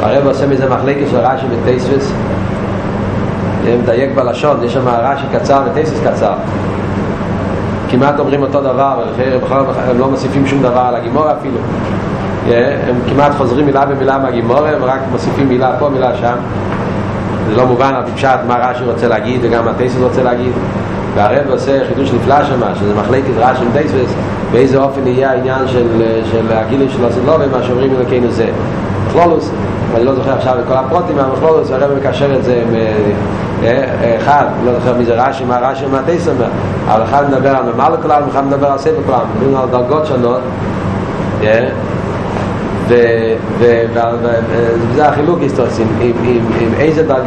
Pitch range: 110-135 Hz